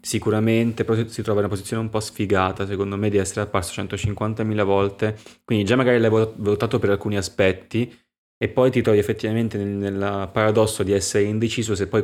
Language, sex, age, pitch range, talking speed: Italian, male, 20-39, 95-105 Hz, 190 wpm